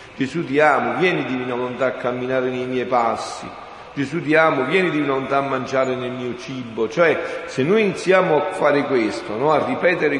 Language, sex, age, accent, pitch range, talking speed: Italian, male, 50-69, native, 160-225 Hz, 180 wpm